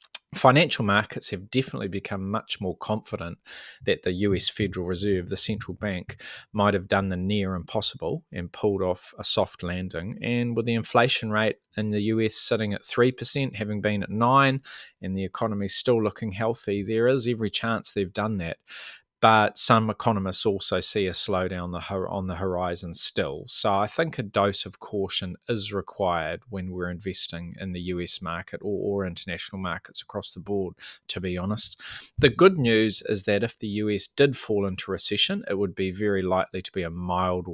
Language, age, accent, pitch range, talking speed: English, 20-39, Australian, 95-110 Hz, 180 wpm